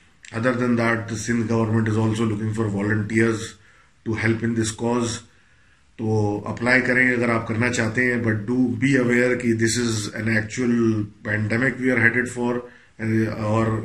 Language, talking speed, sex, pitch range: Urdu, 165 wpm, male, 105-120 Hz